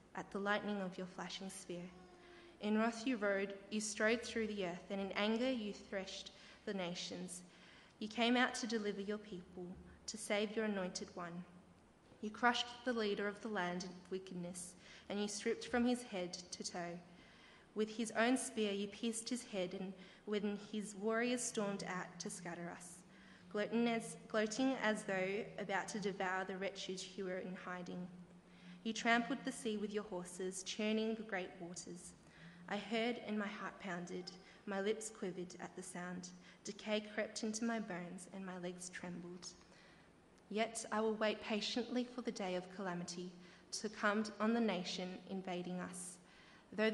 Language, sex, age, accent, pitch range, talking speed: English, female, 20-39, Australian, 180-220 Hz, 170 wpm